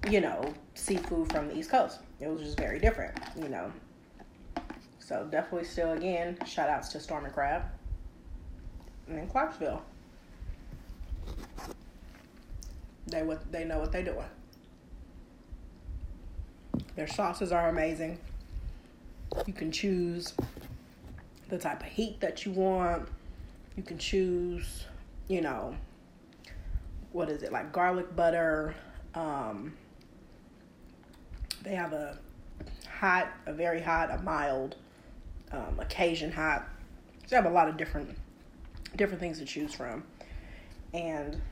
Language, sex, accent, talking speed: English, female, American, 120 wpm